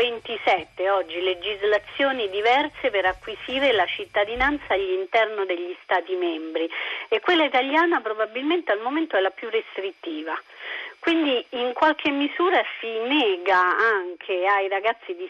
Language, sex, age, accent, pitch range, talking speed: Italian, female, 40-59, native, 190-260 Hz, 125 wpm